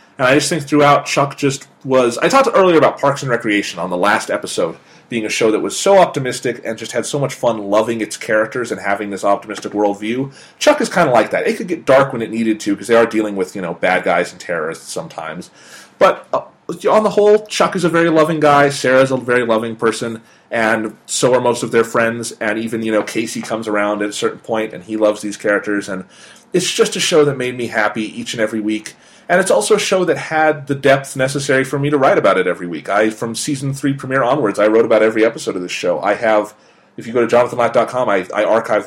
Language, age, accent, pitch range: English, 30-49, American, 110-140 Hz